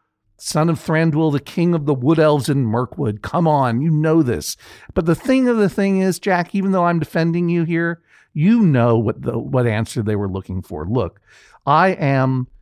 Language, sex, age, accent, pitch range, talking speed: English, male, 50-69, American, 125-190 Hz, 205 wpm